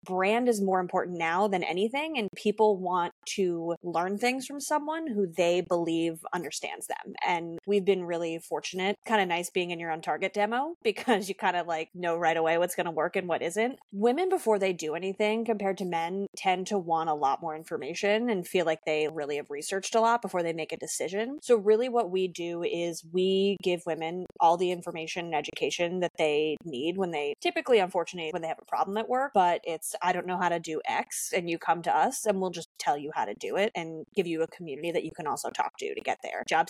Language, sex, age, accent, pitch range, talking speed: English, female, 20-39, American, 170-205 Hz, 235 wpm